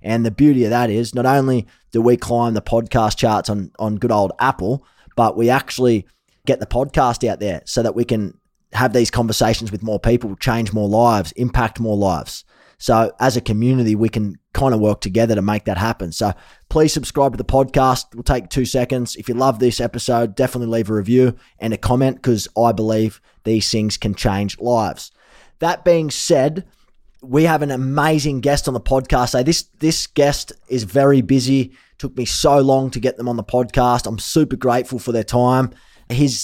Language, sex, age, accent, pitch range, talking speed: English, male, 20-39, Australian, 115-135 Hz, 200 wpm